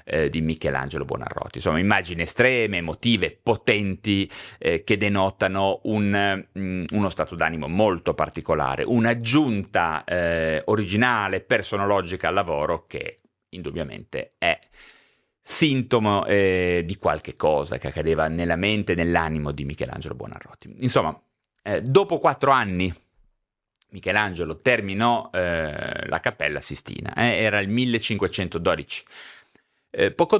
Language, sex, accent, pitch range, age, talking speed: Italian, male, native, 90-120 Hz, 30-49, 105 wpm